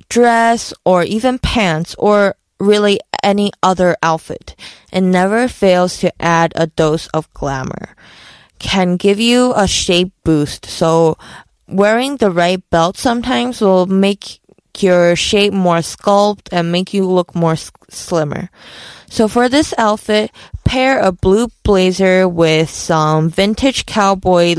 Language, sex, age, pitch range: Korean, female, 20-39, 170-205 Hz